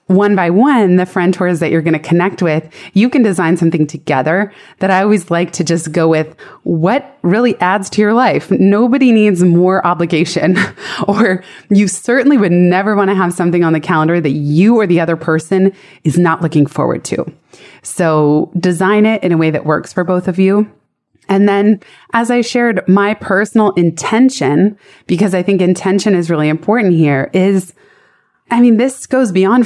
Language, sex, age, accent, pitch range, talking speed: English, female, 20-39, American, 170-210 Hz, 185 wpm